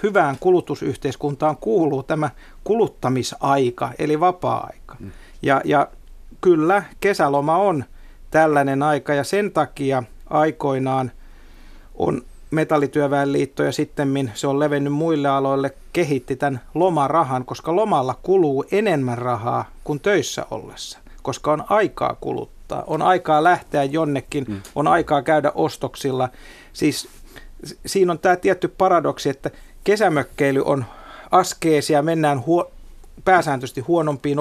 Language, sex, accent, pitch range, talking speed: Finnish, male, native, 130-160 Hz, 115 wpm